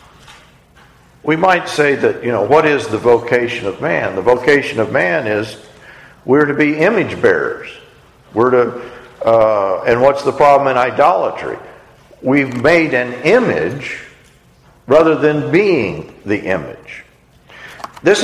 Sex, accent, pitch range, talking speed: male, American, 120-165 Hz, 135 wpm